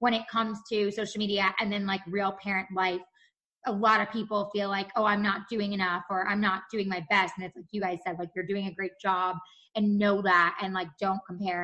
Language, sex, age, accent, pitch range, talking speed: English, female, 20-39, American, 190-225 Hz, 245 wpm